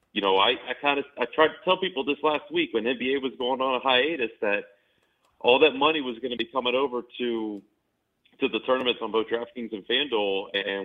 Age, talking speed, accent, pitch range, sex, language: 40-59, 215 wpm, American, 95-130 Hz, male, English